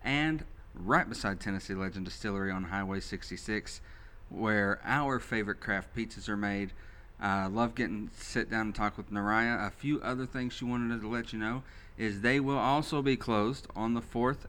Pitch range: 95-120 Hz